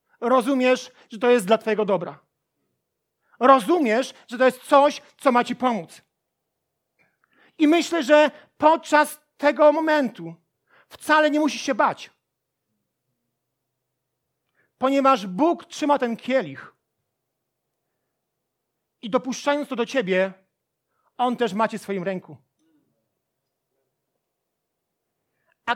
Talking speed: 105 wpm